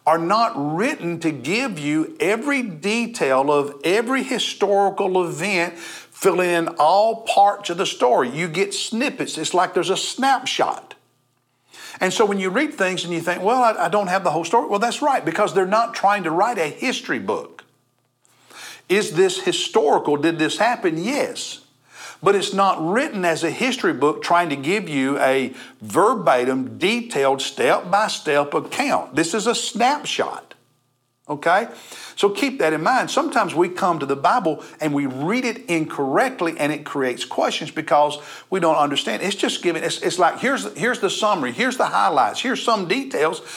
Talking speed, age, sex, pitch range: 175 wpm, 50-69, male, 155-225 Hz